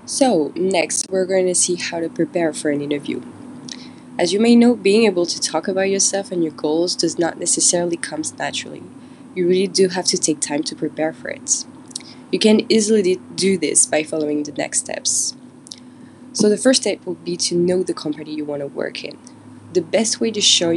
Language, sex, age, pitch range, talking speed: English, female, 20-39, 155-200 Hz, 205 wpm